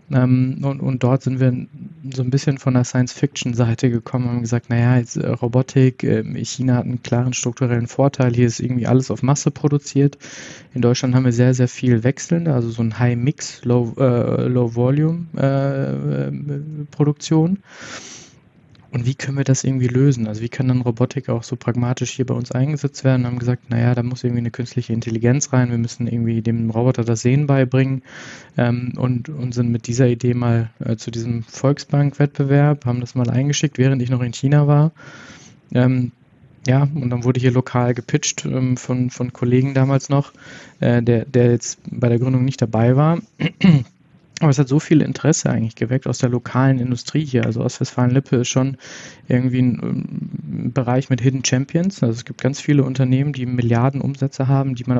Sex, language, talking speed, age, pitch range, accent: male, German, 180 wpm, 20-39, 120-140 Hz, German